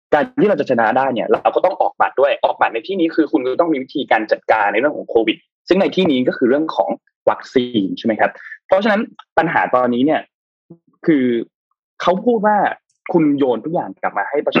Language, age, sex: Thai, 20-39, male